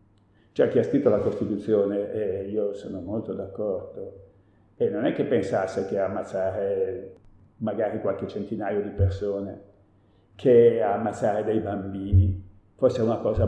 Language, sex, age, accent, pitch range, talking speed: Italian, male, 50-69, native, 100-140 Hz, 135 wpm